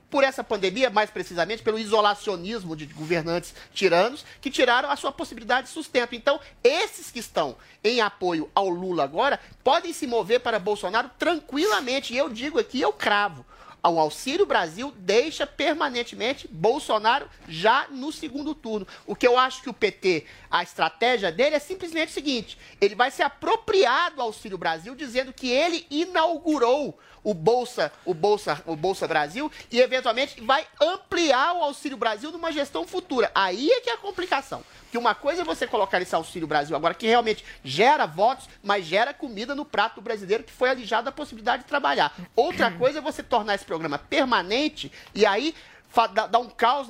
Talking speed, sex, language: 175 wpm, male, Portuguese